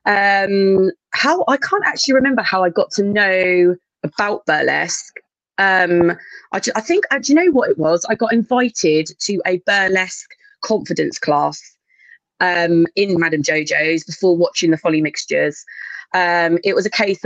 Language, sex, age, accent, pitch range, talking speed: English, female, 20-39, British, 165-210 Hz, 160 wpm